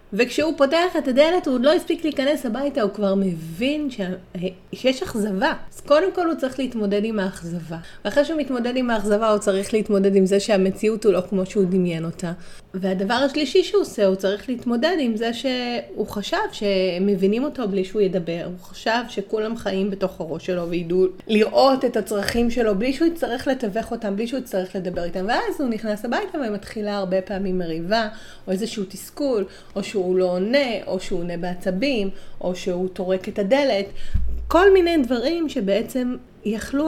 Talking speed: 175 wpm